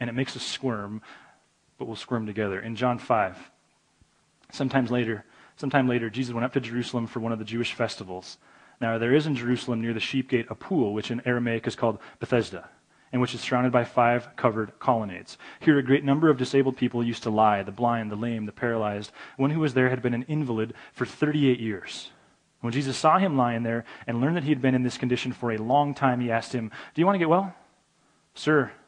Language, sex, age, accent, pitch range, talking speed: English, male, 30-49, American, 110-135 Hz, 225 wpm